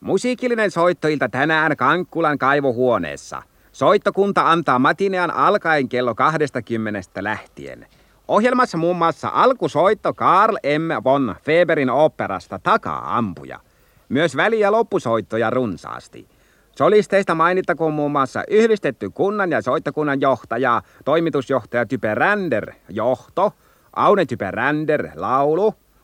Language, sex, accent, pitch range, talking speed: Finnish, male, native, 130-175 Hz, 100 wpm